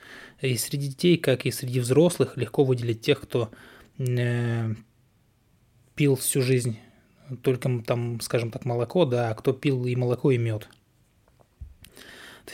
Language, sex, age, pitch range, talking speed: Russian, male, 20-39, 120-145 Hz, 135 wpm